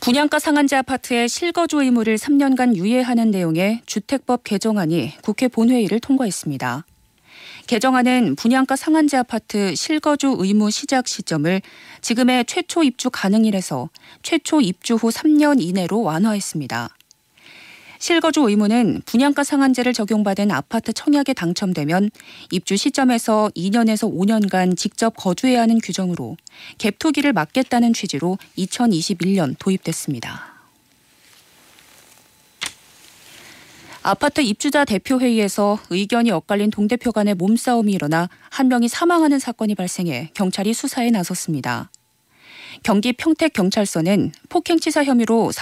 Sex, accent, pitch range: female, native, 190-255 Hz